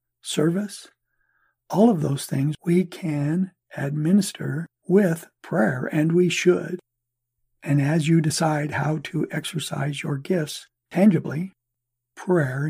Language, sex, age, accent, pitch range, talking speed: English, male, 60-79, American, 135-175 Hz, 115 wpm